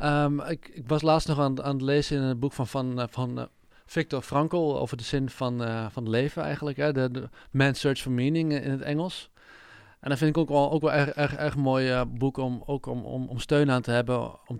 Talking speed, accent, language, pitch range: 250 wpm, Dutch, Dutch, 125-140 Hz